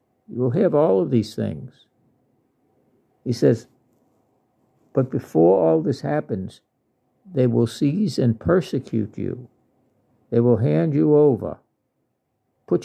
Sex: male